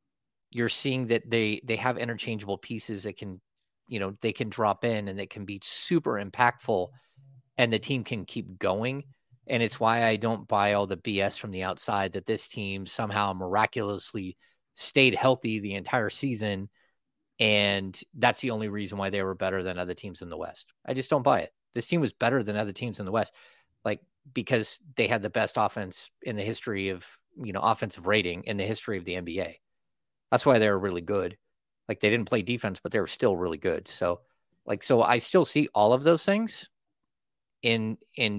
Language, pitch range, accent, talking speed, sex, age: English, 100-120 Hz, American, 200 wpm, male, 30-49